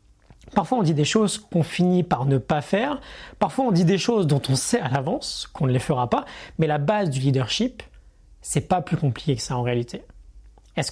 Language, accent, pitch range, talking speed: French, French, 130-180 Hz, 220 wpm